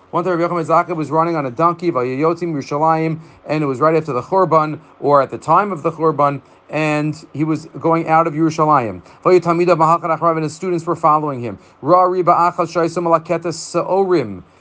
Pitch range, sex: 155-190 Hz, male